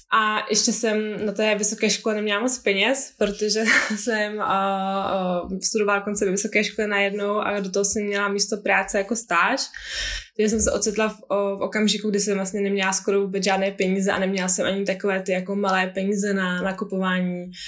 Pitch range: 195-220 Hz